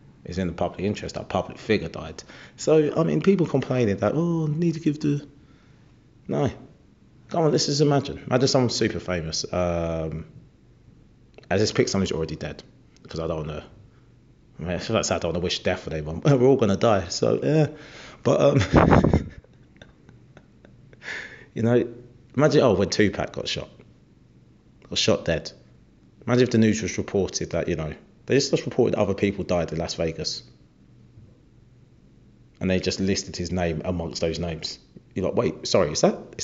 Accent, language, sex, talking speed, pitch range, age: British, English, male, 185 wpm, 90-125 Hz, 30-49